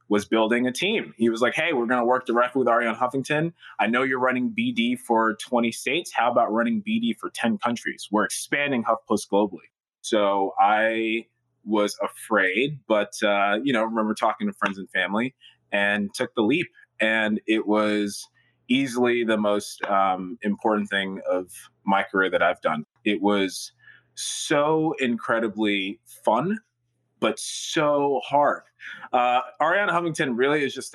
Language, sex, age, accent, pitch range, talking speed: English, male, 20-39, American, 105-125 Hz, 160 wpm